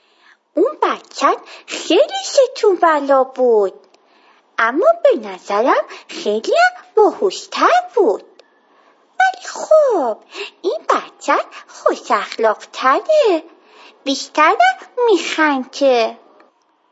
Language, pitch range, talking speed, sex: Persian, 275-400 Hz, 65 wpm, female